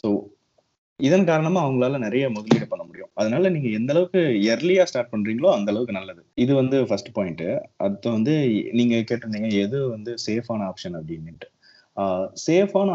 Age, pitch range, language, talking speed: 30-49, 100-145 Hz, Tamil, 150 wpm